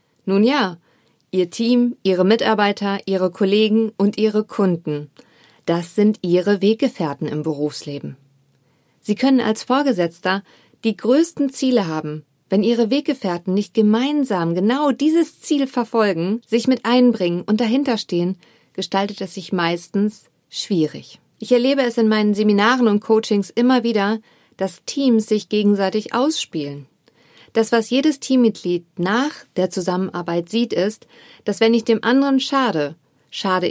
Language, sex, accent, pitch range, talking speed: German, female, German, 180-240 Hz, 135 wpm